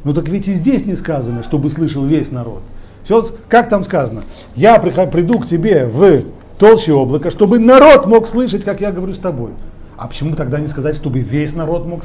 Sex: male